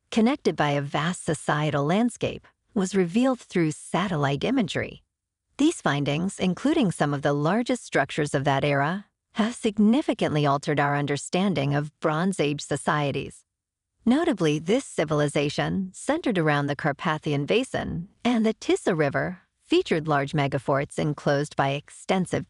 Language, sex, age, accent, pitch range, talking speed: English, female, 50-69, American, 145-215 Hz, 130 wpm